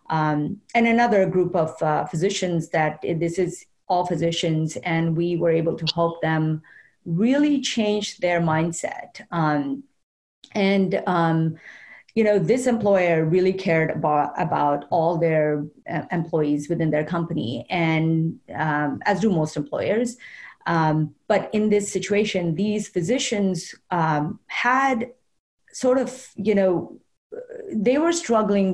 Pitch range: 165-210 Hz